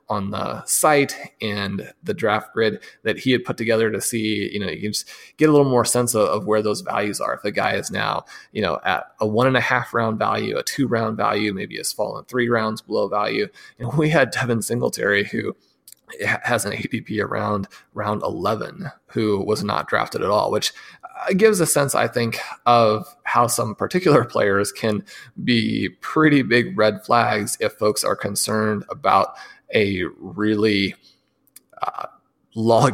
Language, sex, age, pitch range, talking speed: English, male, 20-39, 105-125 Hz, 180 wpm